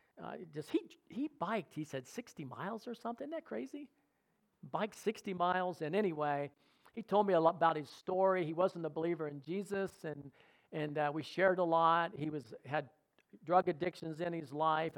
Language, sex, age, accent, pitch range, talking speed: English, male, 50-69, American, 160-205 Hz, 190 wpm